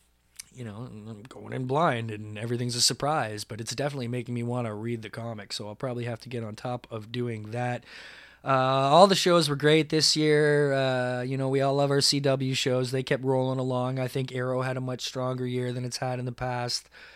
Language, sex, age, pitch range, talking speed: English, male, 20-39, 120-140 Hz, 230 wpm